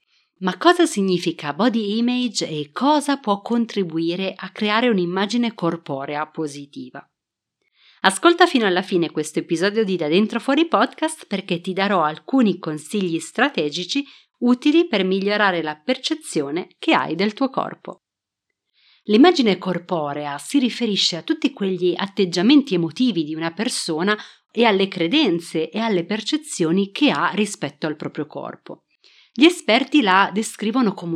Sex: female